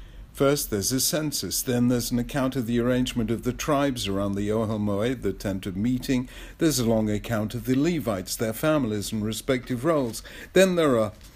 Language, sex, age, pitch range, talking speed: English, male, 60-79, 100-135 Hz, 190 wpm